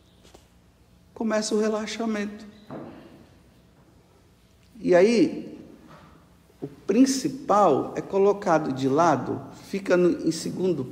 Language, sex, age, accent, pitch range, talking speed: Portuguese, male, 60-79, Brazilian, 135-175 Hz, 75 wpm